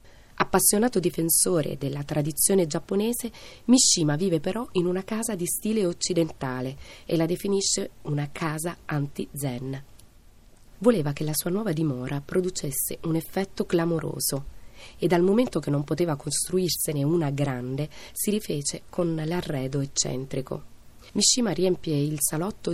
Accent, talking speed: native, 125 wpm